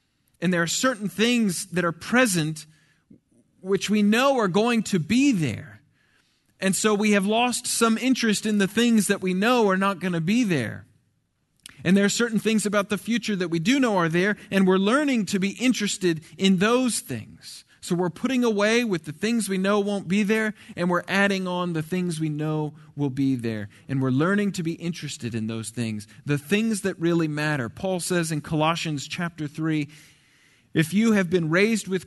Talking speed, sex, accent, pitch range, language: 200 wpm, male, American, 160-210 Hz, English